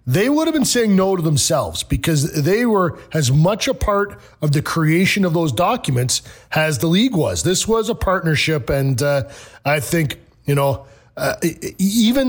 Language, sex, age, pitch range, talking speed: English, male, 40-59, 140-180 Hz, 180 wpm